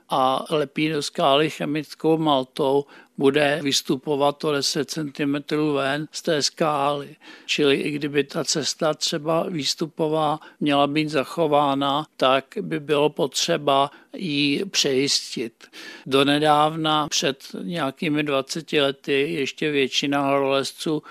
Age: 60-79